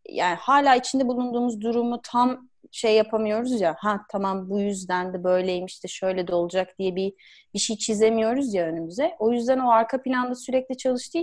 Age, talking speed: 30-49, 175 wpm